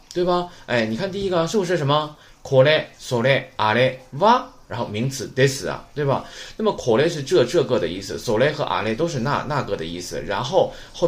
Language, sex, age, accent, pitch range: Chinese, male, 20-39, native, 125-205 Hz